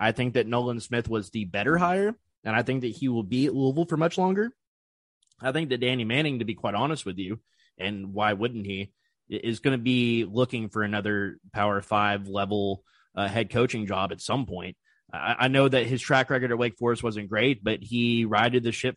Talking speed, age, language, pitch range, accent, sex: 220 wpm, 20-39, English, 105-125 Hz, American, male